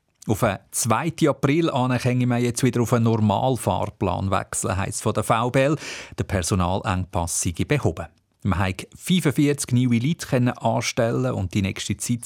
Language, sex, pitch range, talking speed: German, male, 100-140 Hz, 140 wpm